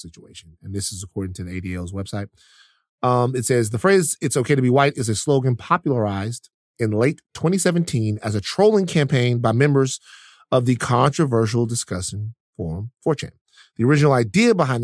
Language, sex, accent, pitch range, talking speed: English, male, American, 110-150 Hz, 170 wpm